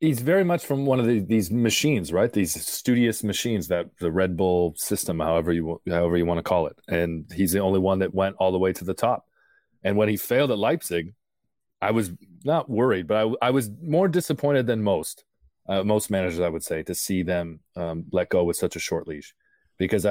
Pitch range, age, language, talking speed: 85-110 Hz, 30-49, English, 225 wpm